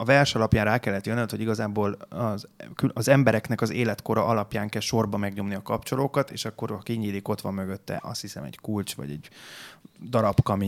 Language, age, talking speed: Hungarian, 30-49, 190 wpm